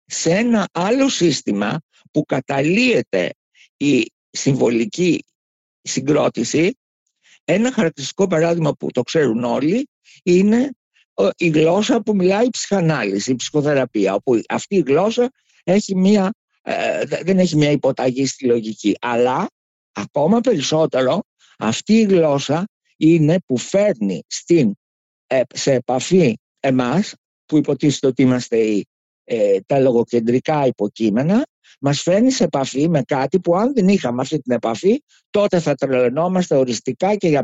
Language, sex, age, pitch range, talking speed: Greek, male, 60-79, 125-205 Hz, 120 wpm